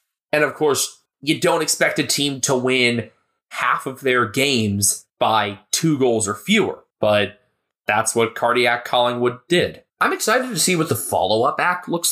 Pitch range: 115-170 Hz